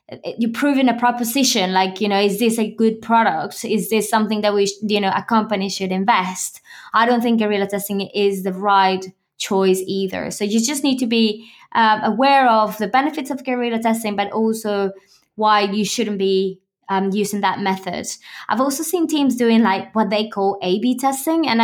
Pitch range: 200-235 Hz